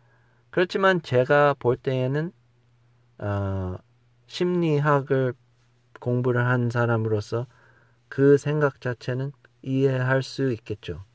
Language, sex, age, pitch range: Korean, male, 40-59, 120-160 Hz